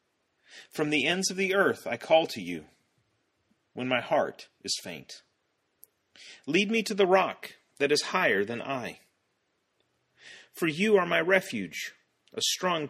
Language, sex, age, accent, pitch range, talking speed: English, male, 40-59, American, 130-190 Hz, 150 wpm